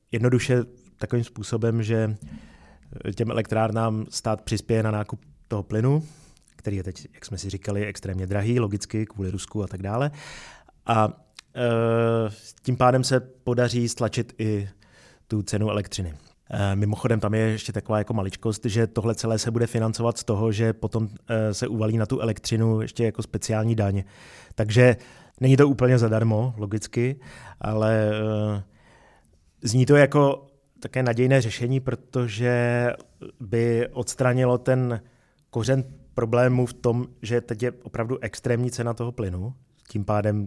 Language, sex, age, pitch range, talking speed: Czech, male, 30-49, 110-125 Hz, 140 wpm